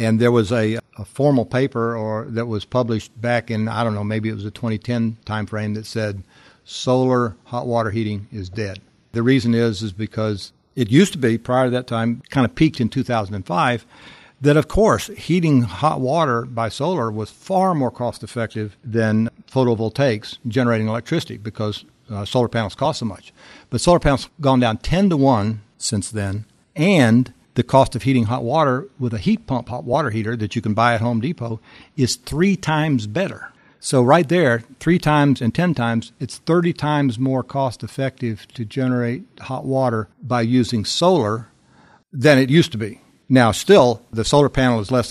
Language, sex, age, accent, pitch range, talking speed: English, male, 60-79, American, 110-135 Hz, 190 wpm